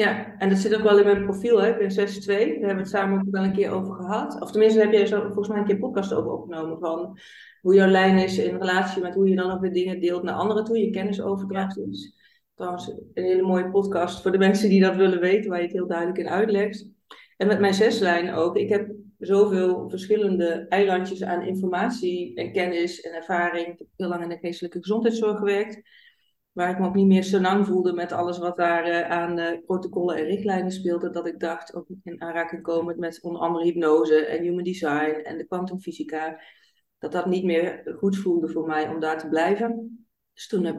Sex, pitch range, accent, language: female, 170-200 Hz, Dutch, Dutch